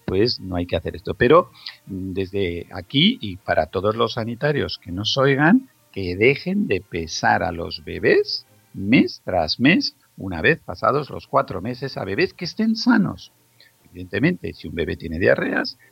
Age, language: 50-69, Spanish